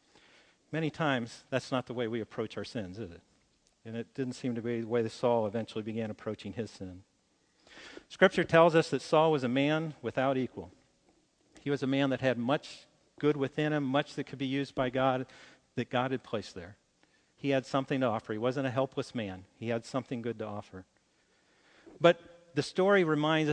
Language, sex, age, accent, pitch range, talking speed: English, male, 50-69, American, 115-150 Hz, 200 wpm